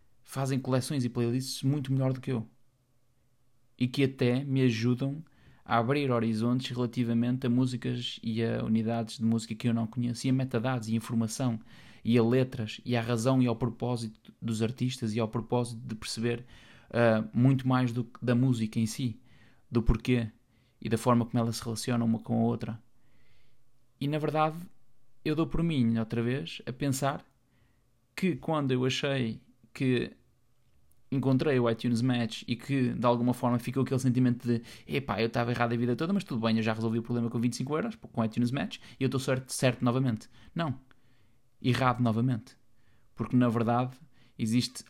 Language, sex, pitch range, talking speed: Portuguese, male, 115-130 Hz, 180 wpm